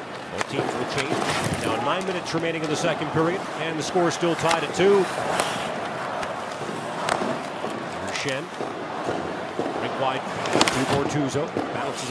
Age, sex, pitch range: 40-59, male, 135-160 Hz